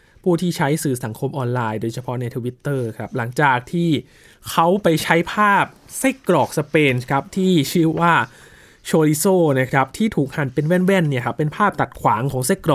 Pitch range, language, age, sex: 130-165 Hz, Thai, 20-39, male